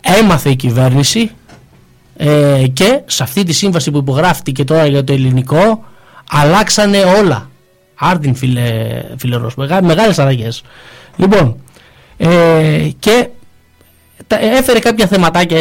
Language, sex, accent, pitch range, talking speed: Greek, male, native, 140-215 Hz, 115 wpm